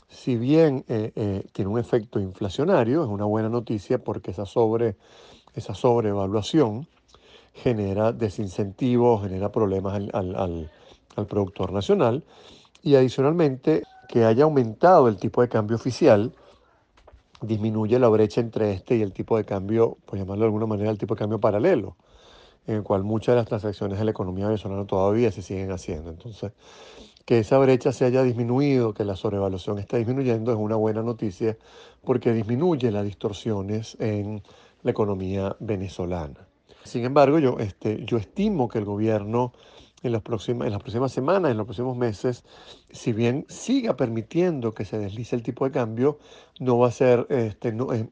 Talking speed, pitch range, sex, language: 165 wpm, 105-125 Hz, male, Spanish